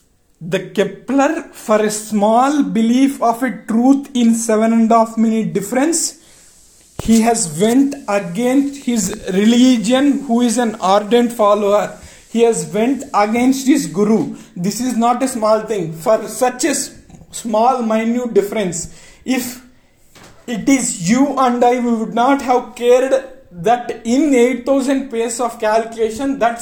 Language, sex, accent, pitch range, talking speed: Telugu, male, native, 215-255 Hz, 145 wpm